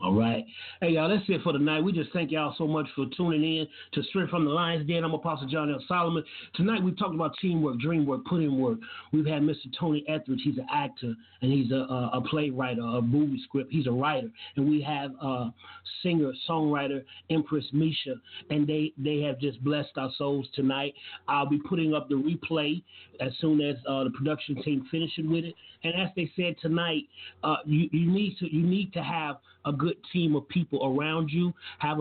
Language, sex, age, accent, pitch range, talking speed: English, male, 30-49, American, 145-180 Hz, 210 wpm